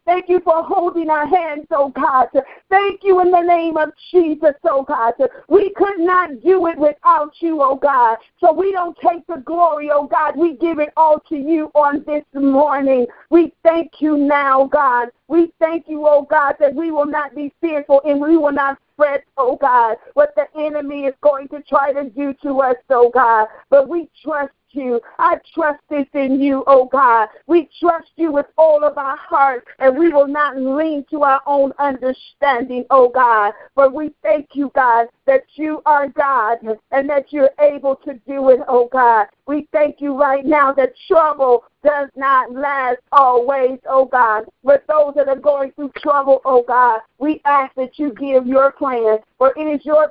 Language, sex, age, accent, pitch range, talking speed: English, female, 40-59, American, 270-310 Hz, 190 wpm